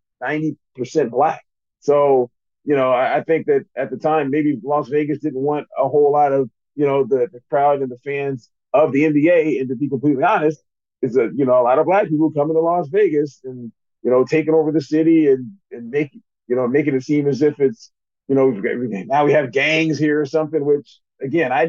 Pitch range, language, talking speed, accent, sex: 125-160 Hz, English, 220 wpm, American, male